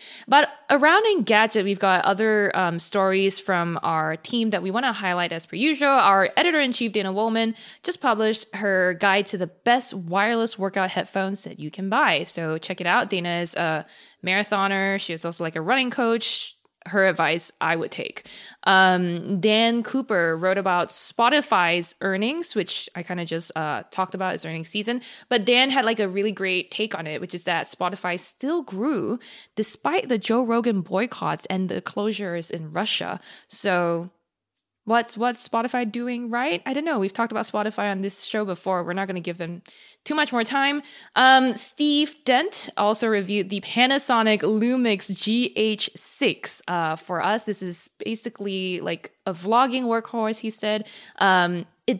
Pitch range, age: 185-235 Hz, 20-39